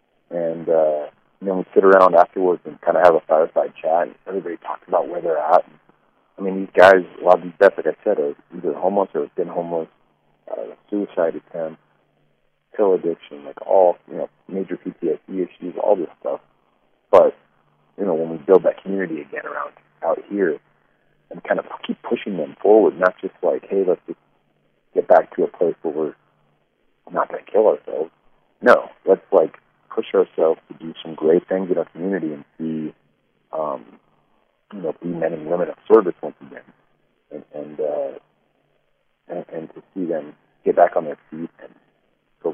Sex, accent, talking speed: male, American, 185 wpm